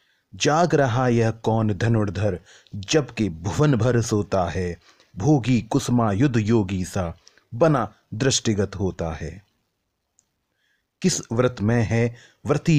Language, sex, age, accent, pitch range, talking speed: Hindi, male, 30-49, native, 100-130 Hz, 110 wpm